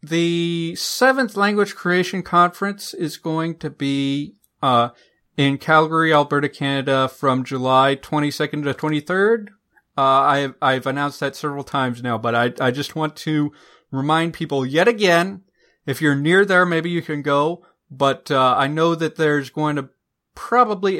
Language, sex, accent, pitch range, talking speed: English, male, American, 130-165 Hz, 155 wpm